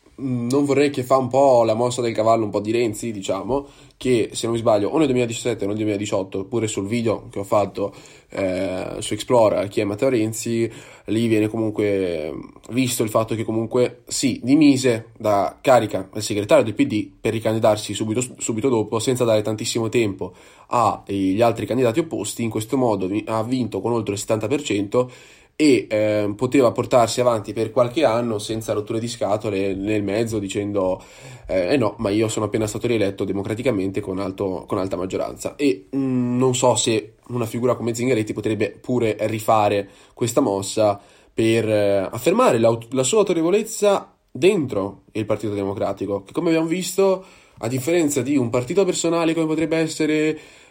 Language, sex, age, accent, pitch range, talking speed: Italian, male, 20-39, native, 105-130 Hz, 170 wpm